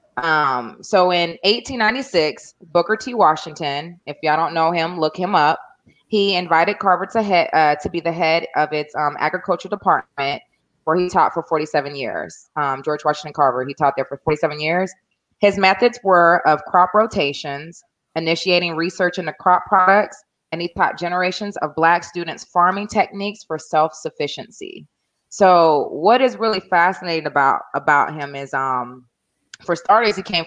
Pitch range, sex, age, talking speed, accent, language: 150-190 Hz, female, 20-39, 160 wpm, American, English